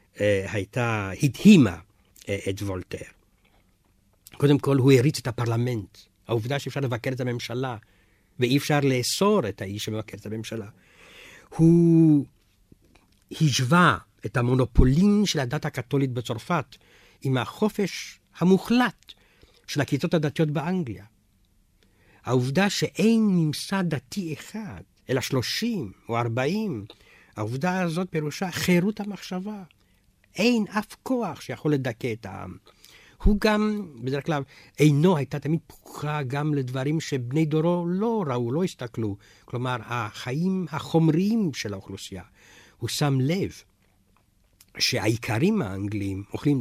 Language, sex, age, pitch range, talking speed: Hebrew, male, 50-69, 105-160 Hz, 110 wpm